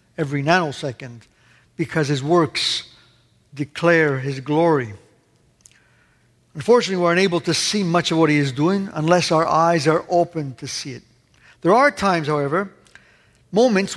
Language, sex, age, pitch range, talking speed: English, male, 60-79, 150-185 Hz, 140 wpm